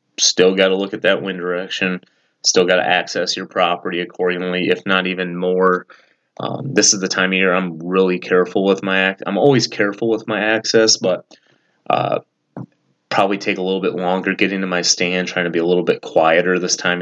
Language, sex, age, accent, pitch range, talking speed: English, male, 30-49, American, 90-95 Hz, 205 wpm